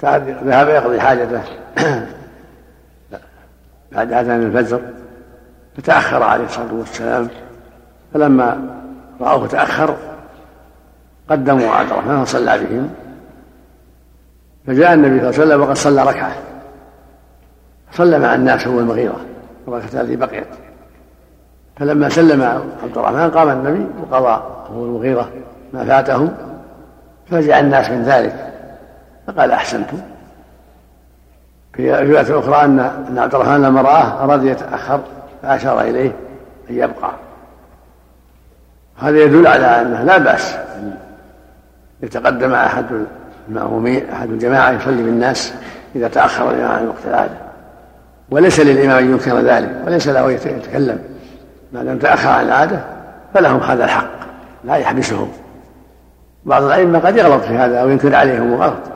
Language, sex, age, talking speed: Arabic, male, 60-79, 120 wpm